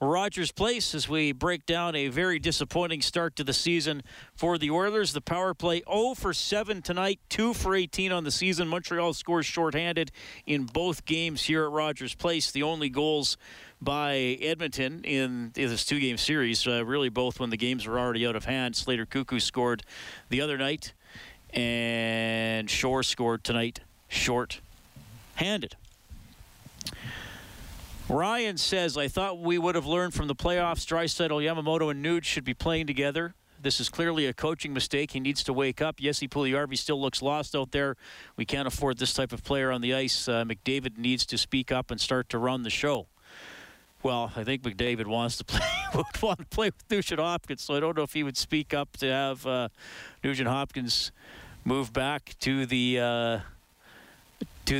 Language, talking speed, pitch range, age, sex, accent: English, 180 wpm, 125-165 Hz, 40-59, male, American